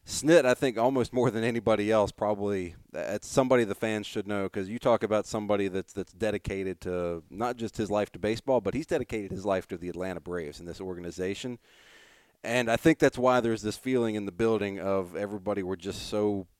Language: English